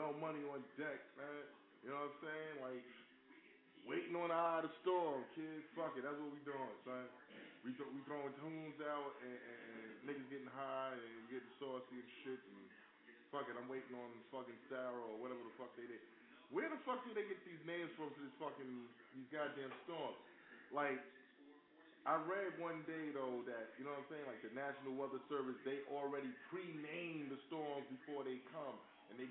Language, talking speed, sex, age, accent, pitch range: English, 205 wpm, male, 20-39, American, 130-155 Hz